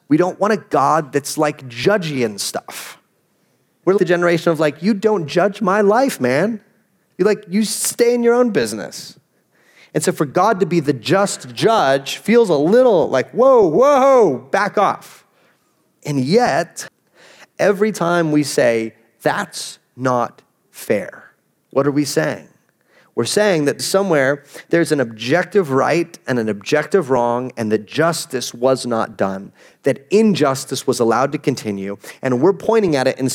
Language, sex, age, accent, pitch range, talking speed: English, male, 30-49, American, 135-190 Hz, 160 wpm